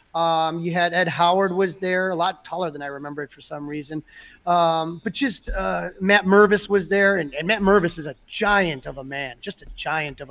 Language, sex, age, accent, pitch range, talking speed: English, male, 30-49, American, 160-190 Hz, 225 wpm